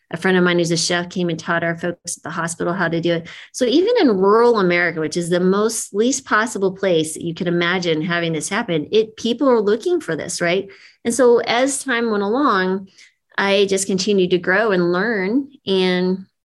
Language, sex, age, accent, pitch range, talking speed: English, female, 30-49, American, 175-210 Hz, 215 wpm